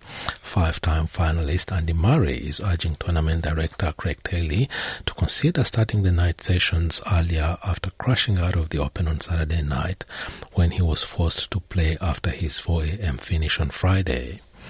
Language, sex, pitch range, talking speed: English, male, 80-95 Hz, 155 wpm